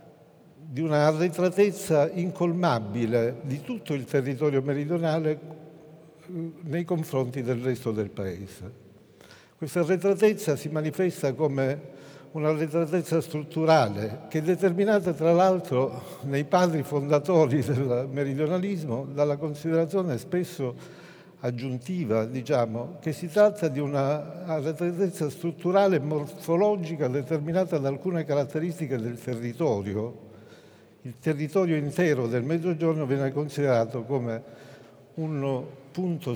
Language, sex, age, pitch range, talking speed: Italian, male, 60-79, 130-165 Hz, 100 wpm